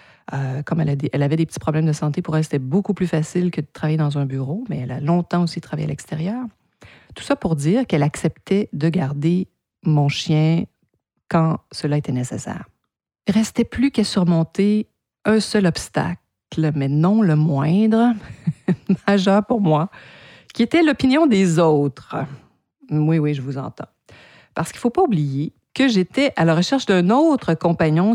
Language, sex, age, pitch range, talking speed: French, female, 50-69, 145-195 Hz, 185 wpm